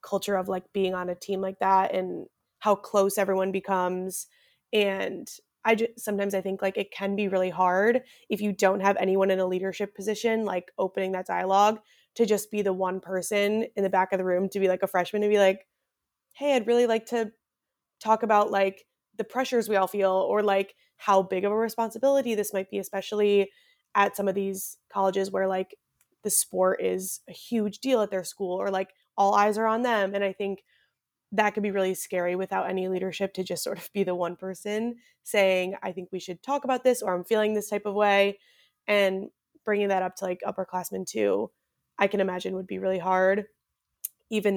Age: 20-39